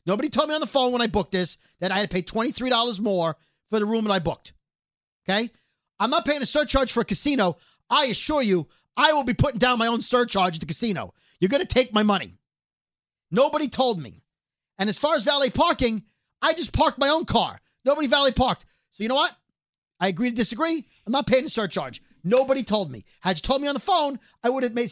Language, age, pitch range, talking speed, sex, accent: English, 40-59, 215-285 Hz, 230 wpm, male, American